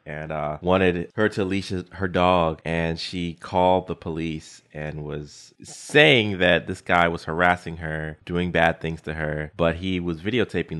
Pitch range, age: 80-90 Hz, 20-39